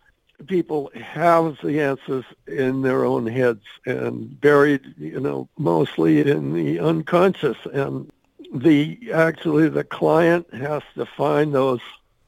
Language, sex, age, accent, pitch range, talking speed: English, male, 60-79, American, 115-150 Hz, 120 wpm